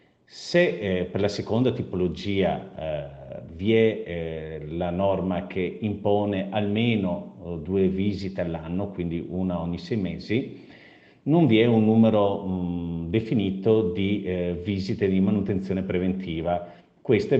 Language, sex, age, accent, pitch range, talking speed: Italian, male, 50-69, native, 85-105 Hz, 125 wpm